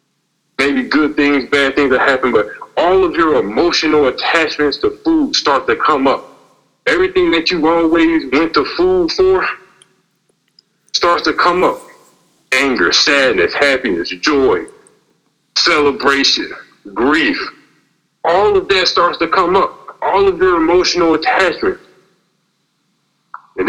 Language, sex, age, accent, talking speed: English, male, 50-69, American, 125 wpm